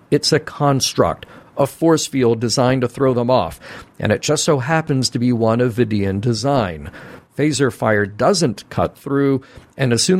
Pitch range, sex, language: 105-140 Hz, male, English